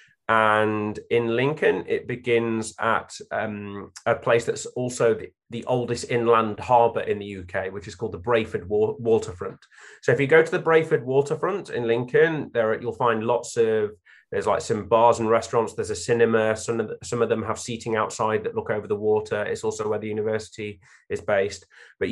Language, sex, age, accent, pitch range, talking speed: English, male, 30-49, British, 115-145 Hz, 185 wpm